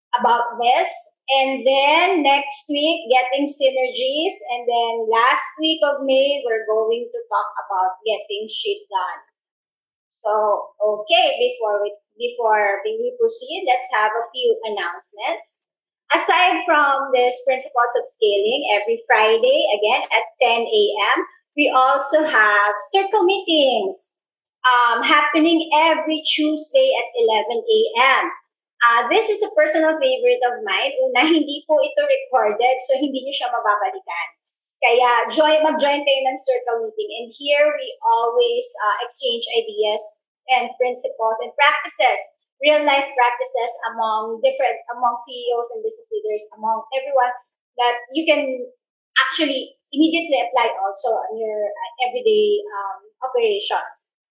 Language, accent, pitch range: Filipino, native, 235-320 Hz